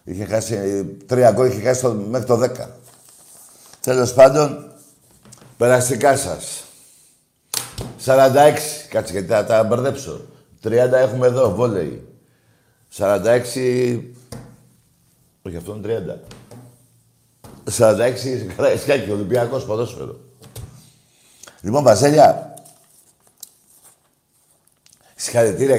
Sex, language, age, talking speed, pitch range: male, Greek, 60-79, 80 wpm, 105-145 Hz